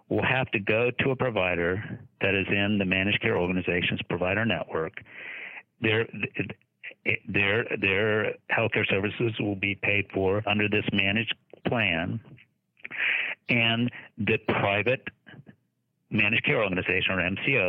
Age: 60-79